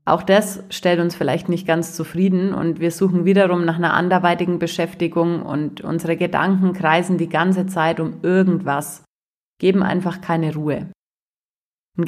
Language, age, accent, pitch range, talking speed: German, 30-49, German, 160-190 Hz, 150 wpm